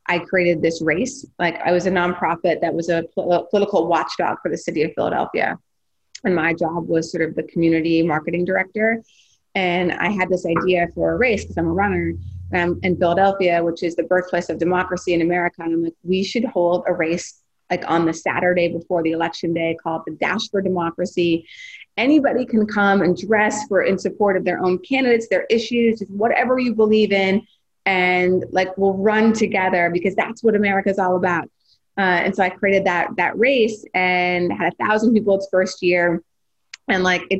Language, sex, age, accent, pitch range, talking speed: English, female, 30-49, American, 170-200 Hz, 195 wpm